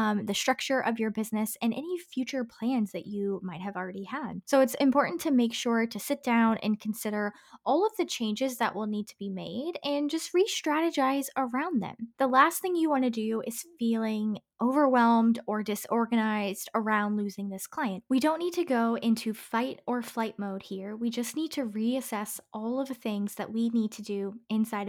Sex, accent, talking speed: female, American, 200 wpm